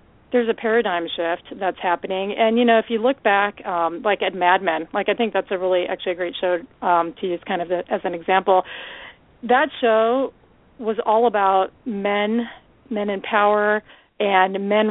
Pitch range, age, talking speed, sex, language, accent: 185-215 Hz, 40-59, 195 wpm, female, English, American